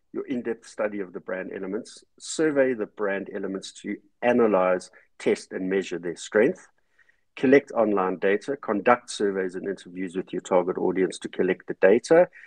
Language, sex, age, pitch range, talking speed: English, male, 50-69, 95-140 Hz, 160 wpm